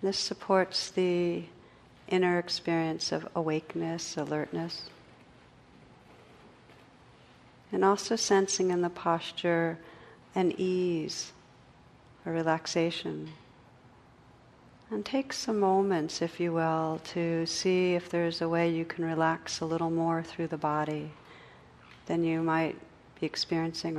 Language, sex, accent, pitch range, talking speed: English, female, American, 160-175 Hz, 115 wpm